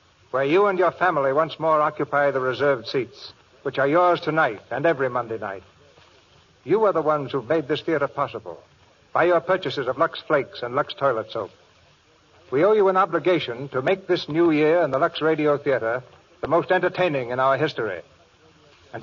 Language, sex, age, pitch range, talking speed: English, male, 60-79, 140-180 Hz, 190 wpm